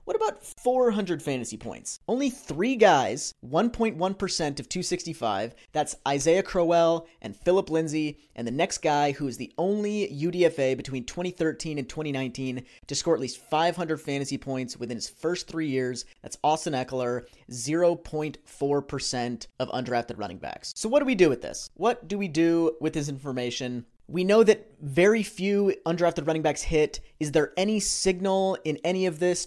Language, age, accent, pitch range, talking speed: English, 30-49, American, 140-185 Hz, 165 wpm